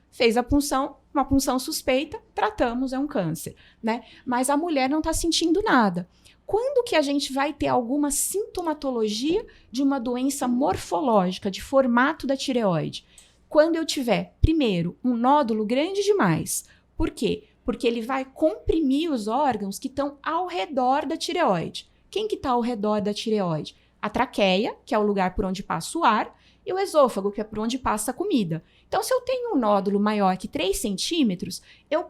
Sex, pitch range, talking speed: female, 235-310 Hz, 180 wpm